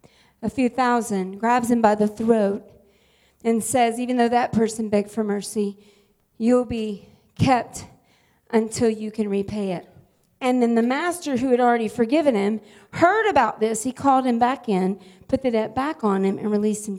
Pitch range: 210-265 Hz